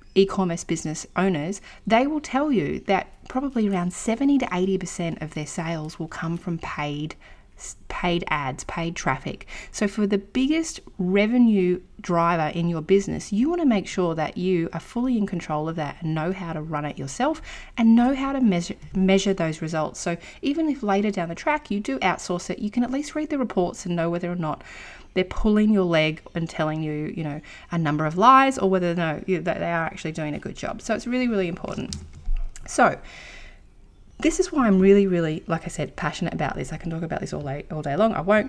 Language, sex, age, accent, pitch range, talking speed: English, female, 30-49, Australian, 160-215 Hz, 215 wpm